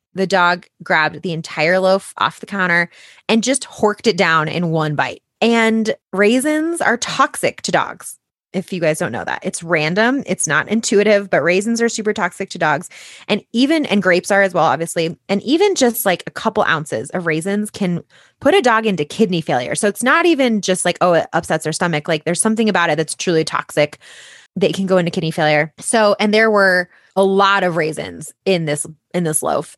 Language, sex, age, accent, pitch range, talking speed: English, female, 20-39, American, 165-220 Hz, 210 wpm